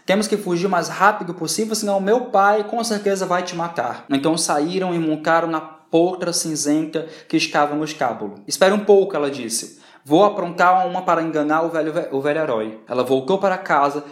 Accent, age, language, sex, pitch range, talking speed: Brazilian, 20-39, Portuguese, male, 145-195 Hz, 205 wpm